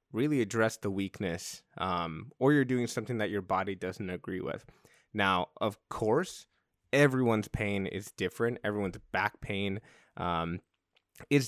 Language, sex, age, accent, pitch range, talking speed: English, male, 20-39, American, 95-120 Hz, 140 wpm